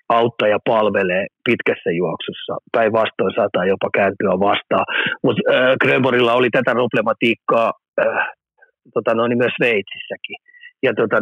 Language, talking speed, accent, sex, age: Finnish, 125 wpm, native, male, 30-49